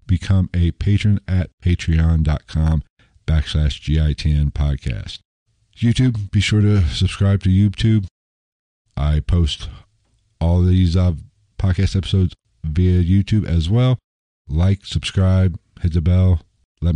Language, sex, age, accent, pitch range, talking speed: English, male, 50-69, American, 85-100 Hz, 115 wpm